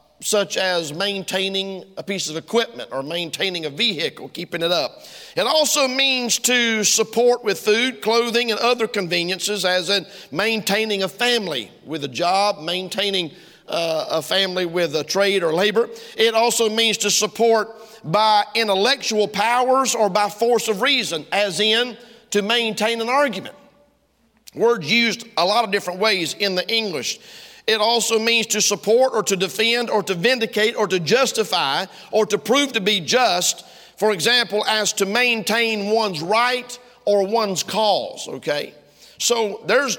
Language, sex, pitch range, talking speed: English, male, 195-235 Hz, 155 wpm